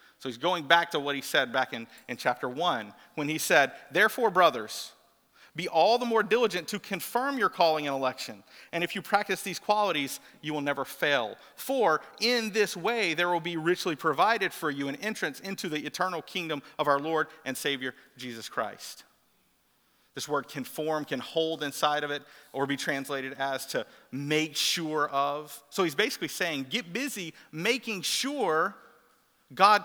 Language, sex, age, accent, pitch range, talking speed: English, male, 40-59, American, 140-210 Hz, 180 wpm